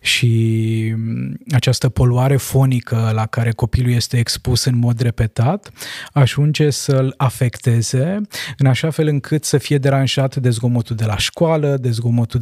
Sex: male